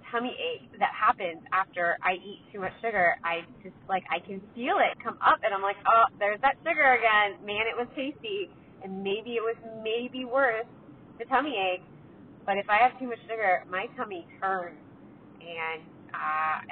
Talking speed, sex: 185 wpm, female